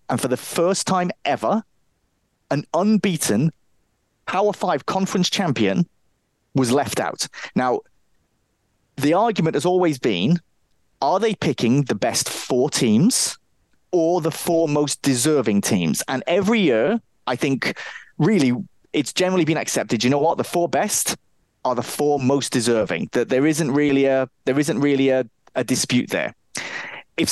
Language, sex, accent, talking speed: English, male, British, 150 wpm